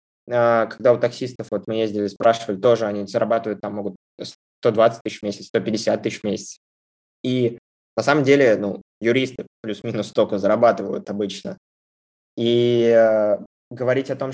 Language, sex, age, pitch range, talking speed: Russian, male, 20-39, 105-125 Hz, 145 wpm